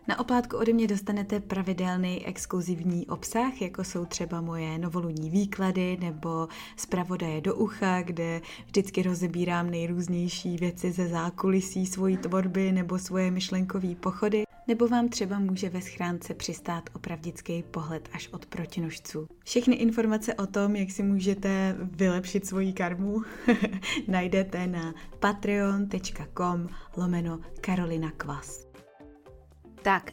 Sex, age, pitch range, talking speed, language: female, 20-39, 175-200 Hz, 120 wpm, Czech